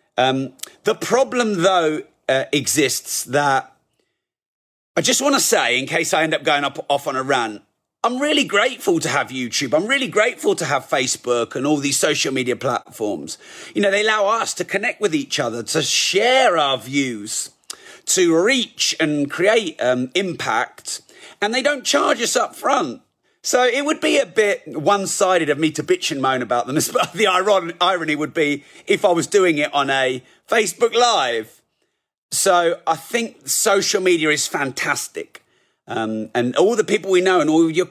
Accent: British